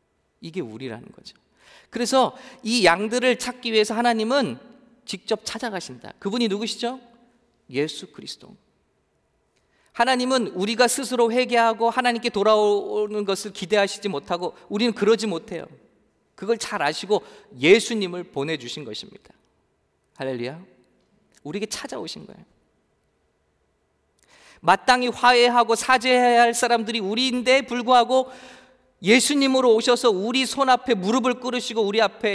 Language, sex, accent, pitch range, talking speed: English, male, Korean, 165-245 Hz, 100 wpm